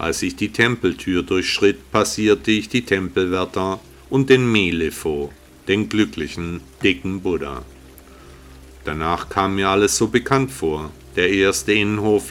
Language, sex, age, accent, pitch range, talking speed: German, male, 50-69, German, 75-105 Hz, 125 wpm